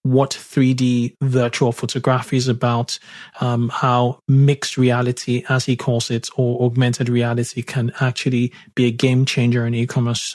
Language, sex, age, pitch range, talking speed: English, male, 20-39, 120-130 Hz, 145 wpm